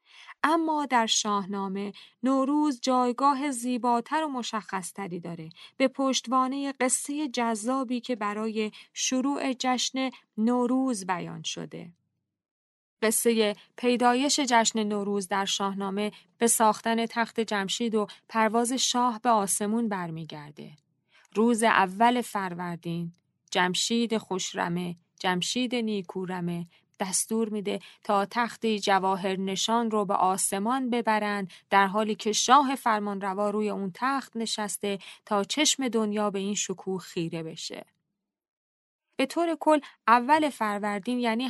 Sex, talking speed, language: female, 110 wpm, Persian